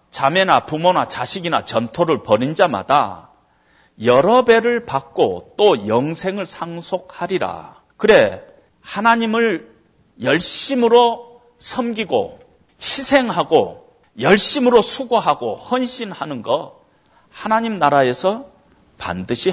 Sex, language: male, Korean